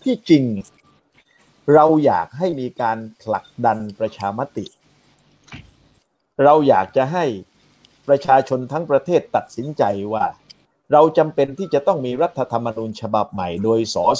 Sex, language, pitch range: male, Thai, 120-155 Hz